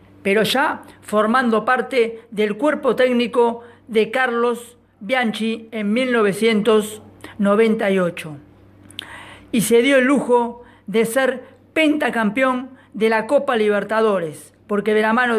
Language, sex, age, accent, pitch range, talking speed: Spanish, female, 40-59, Argentinian, 205-245 Hz, 110 wpm